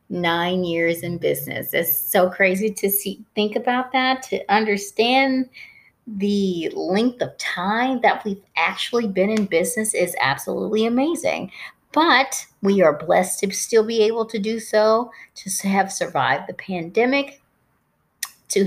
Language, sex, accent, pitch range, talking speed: English, female, American, 180-225 Hz, 140 wpm